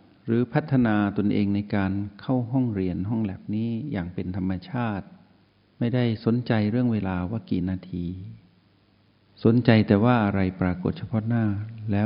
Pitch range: 95-110 Hz